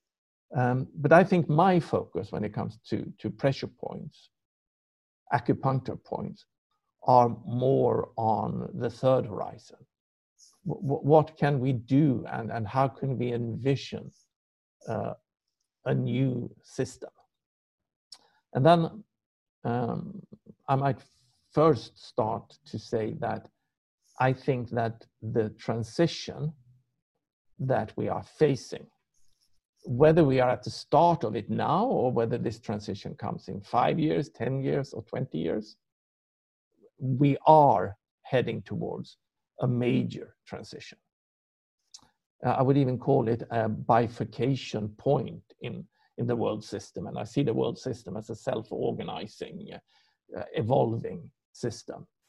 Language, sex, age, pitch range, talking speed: English, male, 60-79, 115-140 Hz, 125 wpm